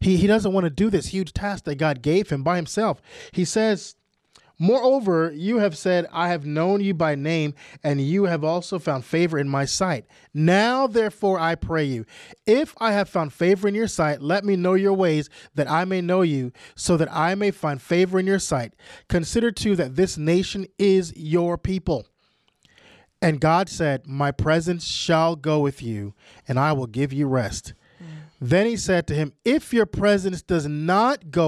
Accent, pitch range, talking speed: American, 155-195 Hz, 195 wpm